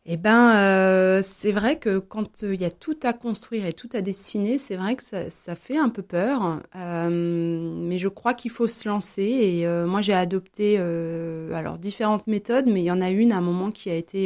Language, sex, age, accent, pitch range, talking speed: French, female, 30-49, French, 170-205 Hz, 235 wpm